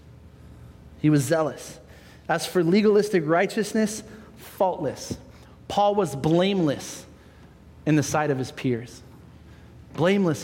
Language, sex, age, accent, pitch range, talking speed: English, male, 30-49, American, 130-180 Hz, 105 wpm